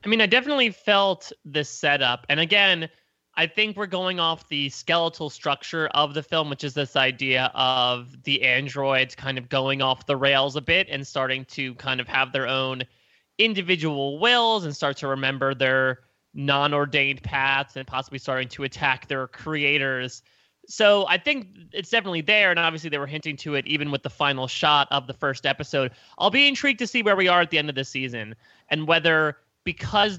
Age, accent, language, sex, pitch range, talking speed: 20-39, American, English, male, 130-165 Hz, 195 wpm